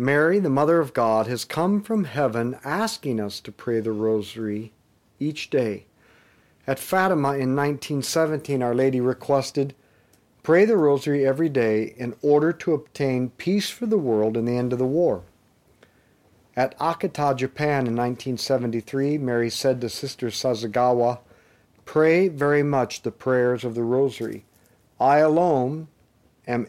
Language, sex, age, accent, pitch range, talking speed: English, male, 50-69, American, 120-155 Hz, 145 wpm